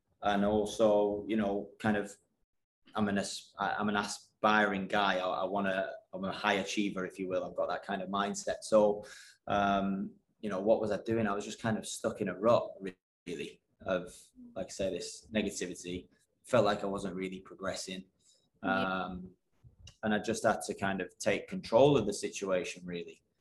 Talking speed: 190 wpm